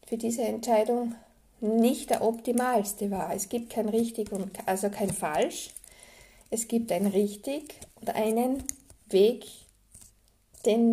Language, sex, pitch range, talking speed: German, female, 200-230 Hz, 125 wpm